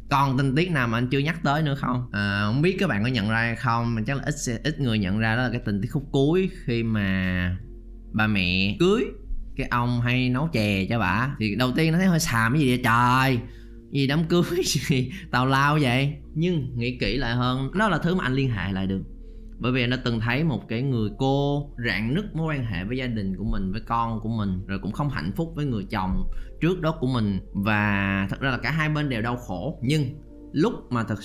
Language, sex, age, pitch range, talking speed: Vietnamese, male, 20-39, 110-145 Hz, 250 wpm